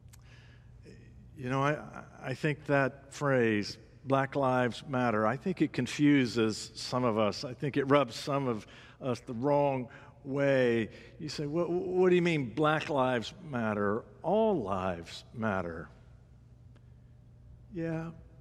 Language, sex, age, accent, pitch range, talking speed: English, male, 60-79, American, 115-155 Hz, 135 wpm